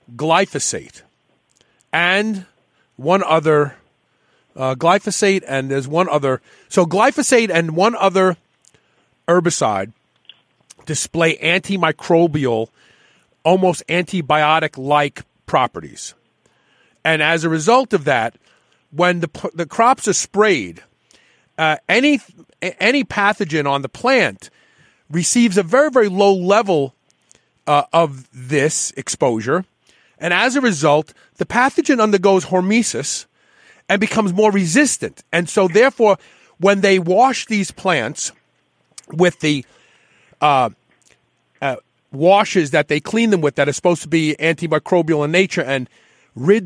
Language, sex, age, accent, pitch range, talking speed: English, male, 40-59, American, 150-200 Hz, 115 wpm